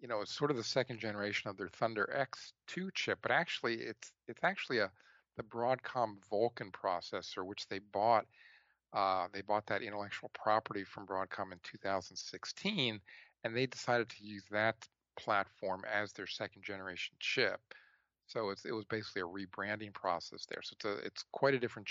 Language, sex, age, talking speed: English, male, 50-69, 175 wpm